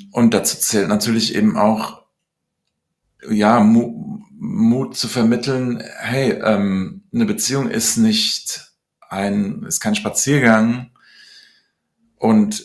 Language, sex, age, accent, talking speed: German, male, 40-59, German, 105 wpm